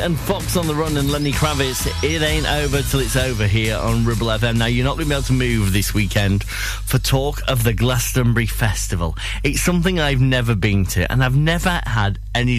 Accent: British